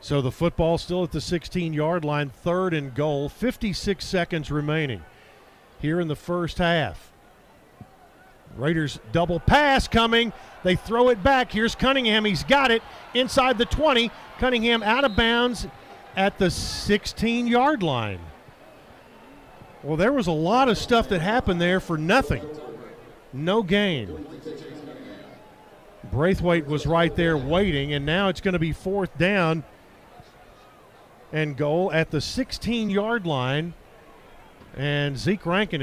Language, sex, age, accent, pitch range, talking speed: English, male, 50-69, American, 150-200 Hz, 130 wpm